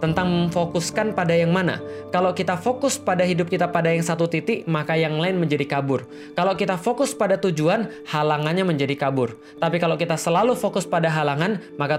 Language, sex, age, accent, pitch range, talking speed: Indonesian, male, 20-39, native, 145-180 Hz, 180 wpm